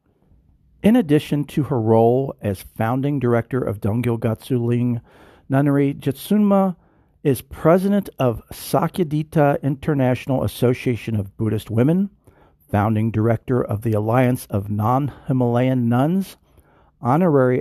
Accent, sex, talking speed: American, male, 100 wpm